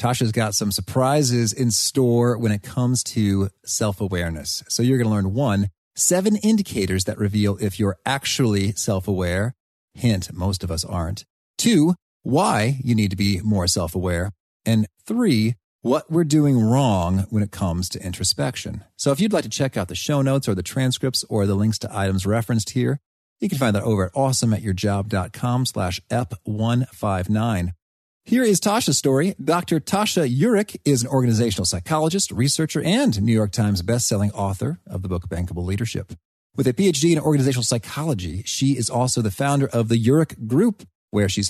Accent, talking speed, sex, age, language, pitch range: American, 170 wpm, male, 40-59, English, 100-135 Hz